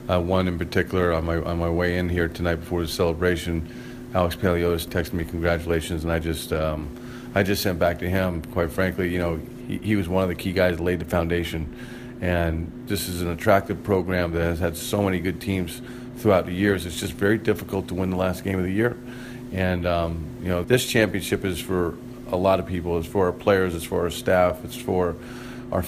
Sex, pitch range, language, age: male, 90-100 Hz, English, 40-59